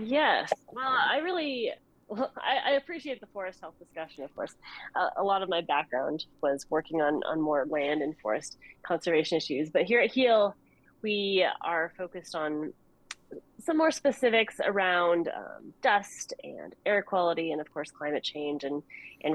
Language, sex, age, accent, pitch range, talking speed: English, female, 30-49, American, 155-220 Hz, 165 wpm